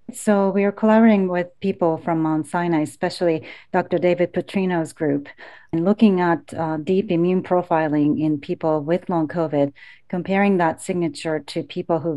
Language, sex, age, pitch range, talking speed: English, female, 40-59, 170-205 Hz, 160 wpm